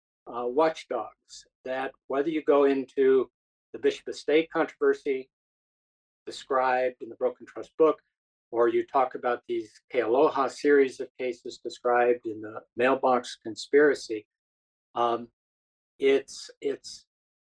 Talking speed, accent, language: 120 wpm, American, English